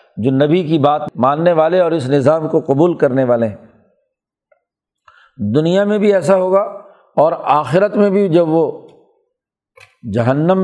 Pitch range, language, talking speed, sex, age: 145-185 Hz, Urdu, 145 wpm, male, 50-69